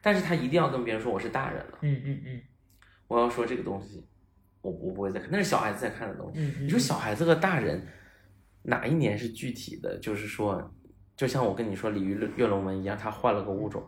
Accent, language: native, Chinese